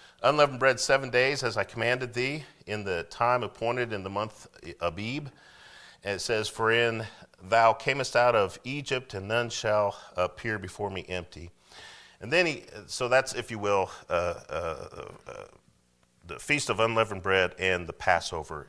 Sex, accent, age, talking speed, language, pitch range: male, American, 40-59, 165 wpm, English, 85-120 Hz